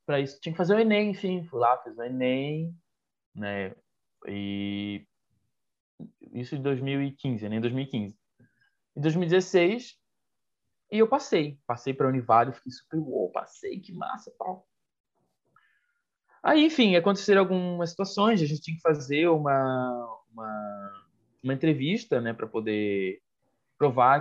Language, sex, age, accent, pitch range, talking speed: Portuguese, male, 20-39, Brazilian, 120-180 Hz, 135 wpm